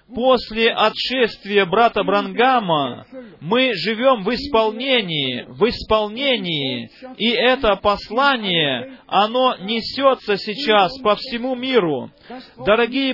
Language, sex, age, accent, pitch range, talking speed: Russian, male, 30-49, native, 200-245 Hz, 90 wpm